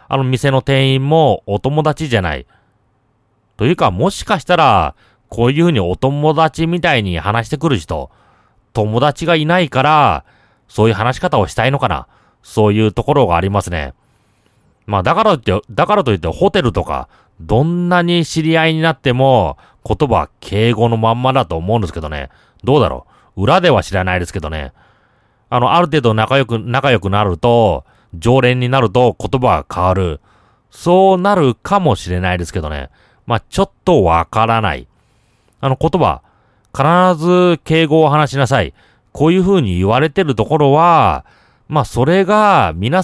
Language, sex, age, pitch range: Japanese, male, 30-49, 100-155 Hz